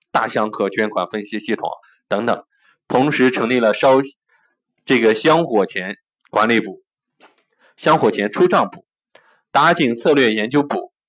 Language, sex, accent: Chinese, male, native